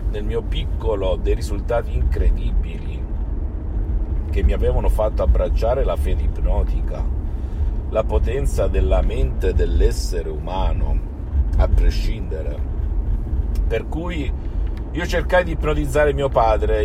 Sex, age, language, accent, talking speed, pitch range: male, 50-69, Italian, native, 105 wpm, 75-100 Hz